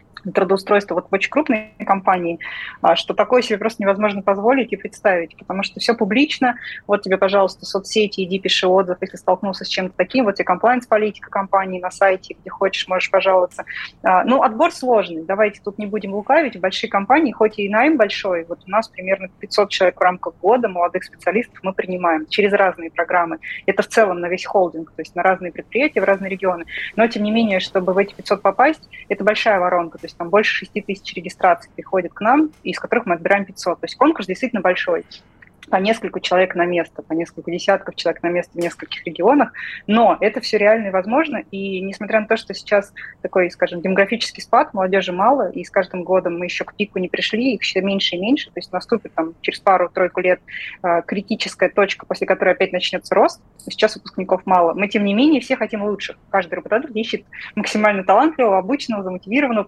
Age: 20-39